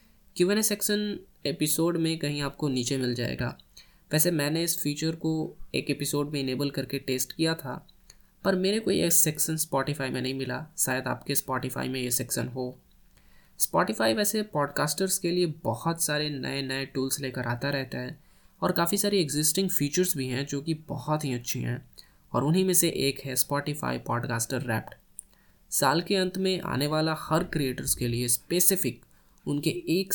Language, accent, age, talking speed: Hindi, native, 10-29, 175 wpm